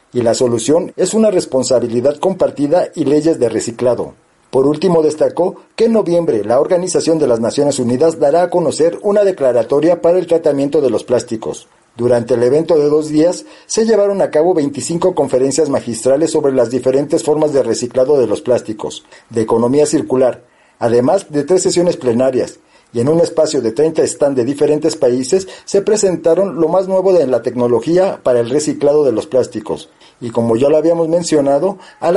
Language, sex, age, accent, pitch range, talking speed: Spanish, male, 50-69, Mexican, 130-180 Hz, 175 wpm